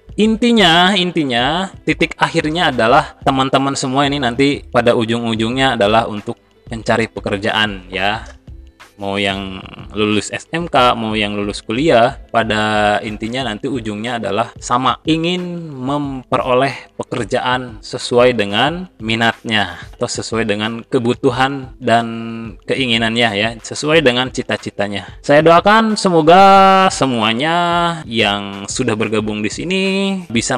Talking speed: 110 wpm